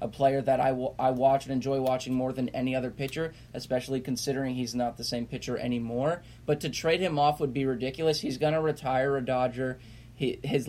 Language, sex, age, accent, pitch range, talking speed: English, male, 20-39, American, 125-145 Hz, 210 wpm